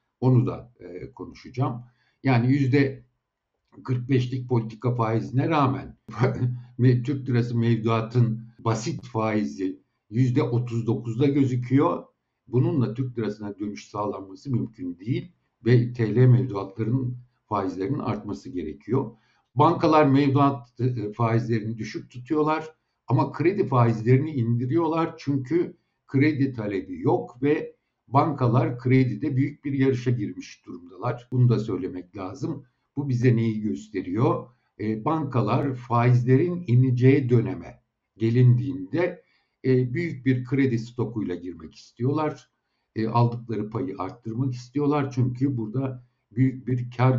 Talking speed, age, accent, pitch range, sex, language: 100 wpm, 60-79, native, 115-135 Hz, male, Turkish